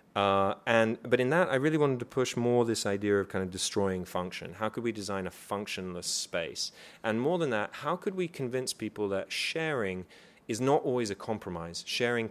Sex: male